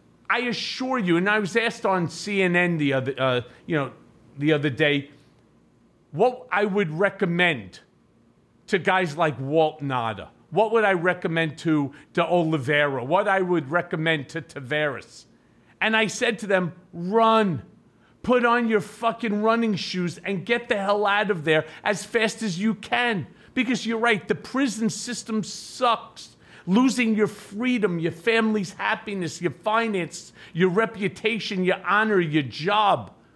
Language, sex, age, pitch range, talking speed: English, male, 40-59, 165-225 Hz, 150 wpm